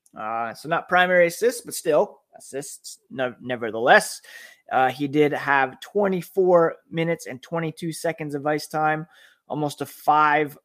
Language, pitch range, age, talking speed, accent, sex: English, 130-155 Hz, 20-39, 135 wpm, American, male